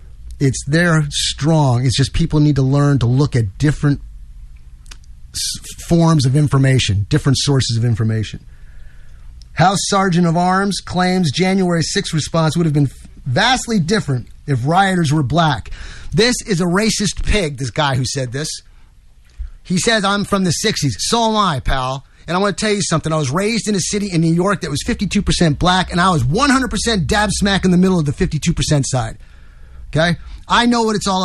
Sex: male